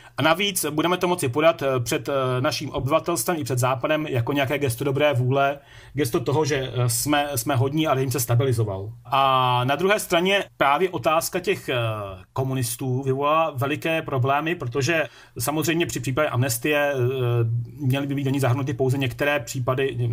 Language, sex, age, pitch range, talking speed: Slovak, male, 40-59, 125-150 Hz, 145 wpm